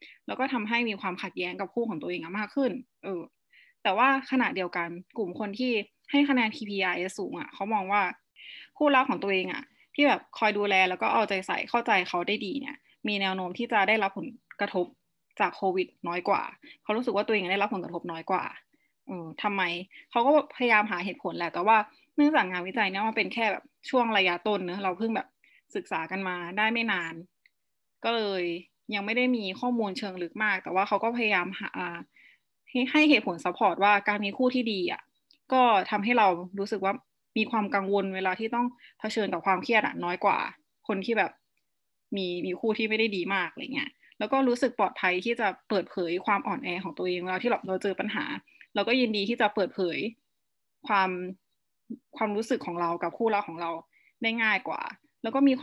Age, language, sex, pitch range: 20-39, Thai, female, 185-240 Hz